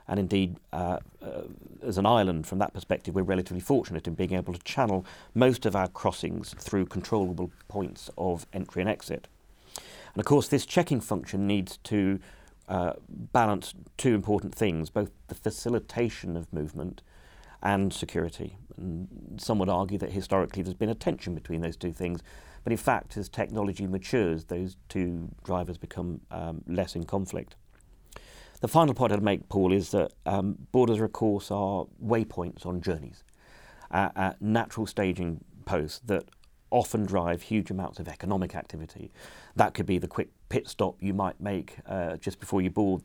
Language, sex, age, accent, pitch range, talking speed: English, male, 40-59, British, 90-105 Hz, 170 wpm